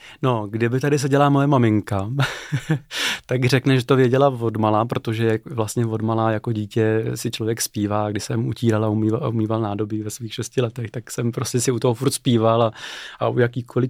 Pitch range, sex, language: 115-135 Hz, male, Czech